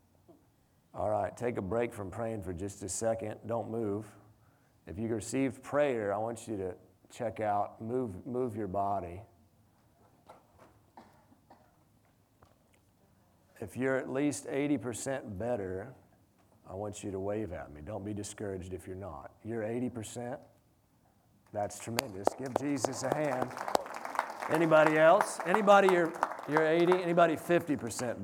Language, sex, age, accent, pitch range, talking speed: English, male, 40-59, American, 105-145 Hz, 125 wpm